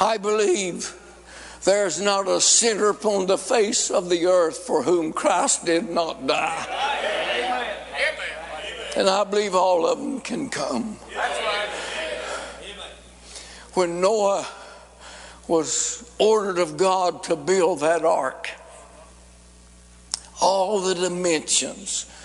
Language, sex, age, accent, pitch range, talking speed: English, male, 60-79, American, 150-220 Hz, 105 wpm